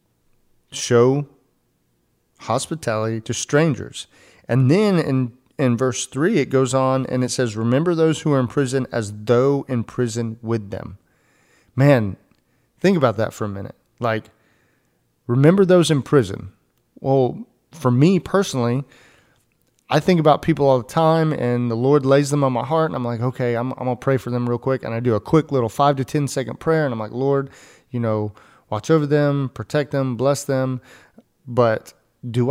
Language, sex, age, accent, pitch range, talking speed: English, male, 30-49, American, 115-140 Hz, 180 wpm